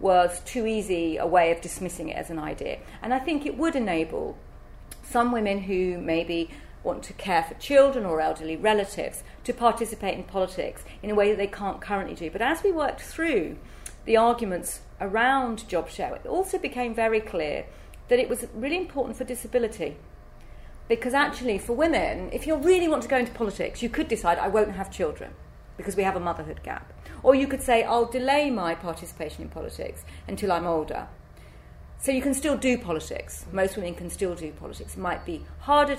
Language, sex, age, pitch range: English, female, 40-59, 180-255 Hz